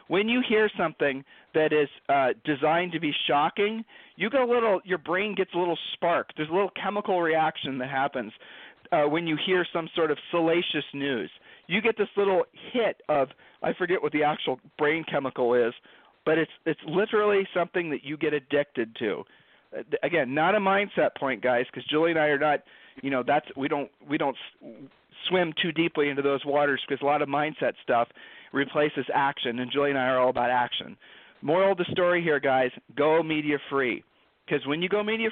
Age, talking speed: 40-59, 200 wpm